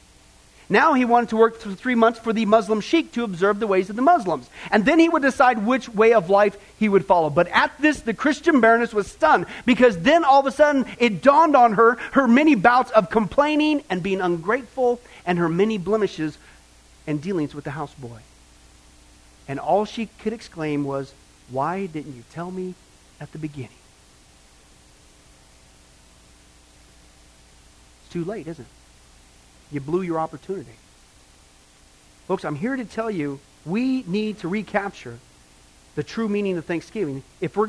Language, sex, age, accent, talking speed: English, male, 40-59, American, 170 wpm